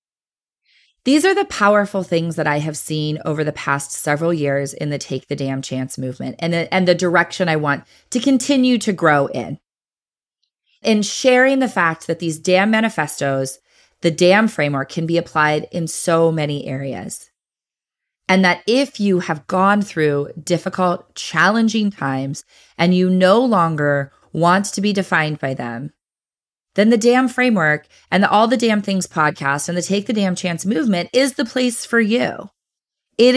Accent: American